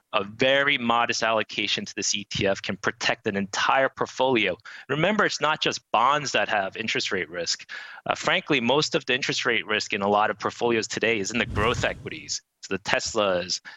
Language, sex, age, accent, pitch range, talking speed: English, male, 30-49, American, 110-135 Hz, 190 wpm